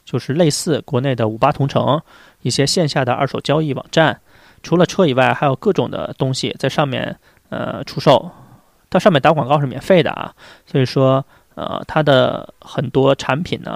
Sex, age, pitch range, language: male, 20-39, 130-160 Hz, Chinese